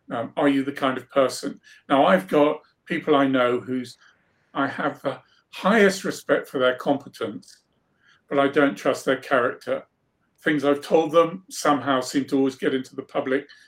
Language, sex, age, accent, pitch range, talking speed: English, male, 50-69, British, 130-165 Hz, 175 wpm